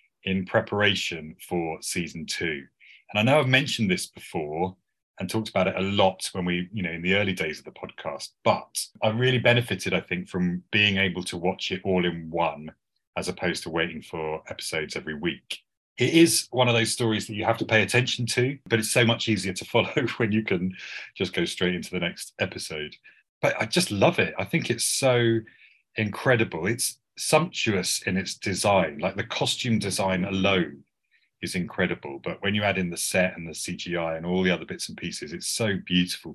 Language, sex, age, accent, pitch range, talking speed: English, male, 30-49, British, 90-115 Hz, 205 wpm